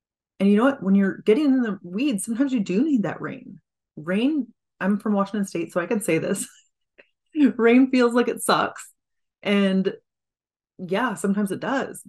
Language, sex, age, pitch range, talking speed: English, female, 30-49, 185-235 Hz, 180 wpm